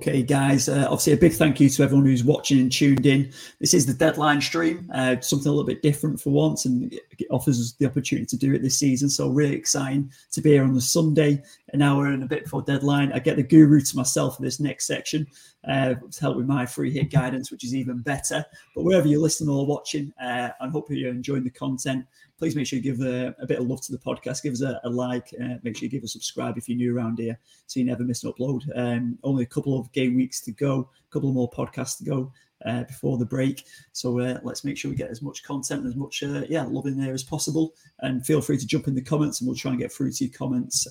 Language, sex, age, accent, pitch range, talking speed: English, male, 30-49, British, 130-145 Hz, 275 wpm